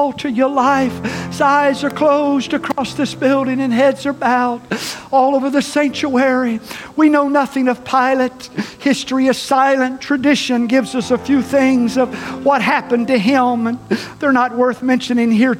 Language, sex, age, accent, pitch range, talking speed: English, male, 60-79, American, 250-285 Hz, 160 wpm